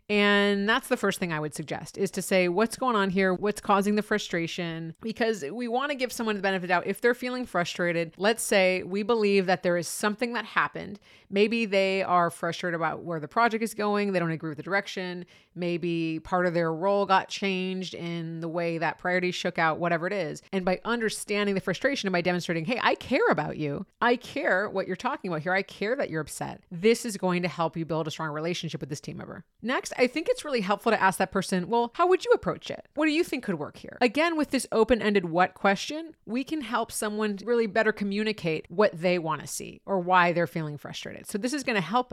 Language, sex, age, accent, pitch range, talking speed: English, female, 30-49, American, 170-220 Hz, 235 wpm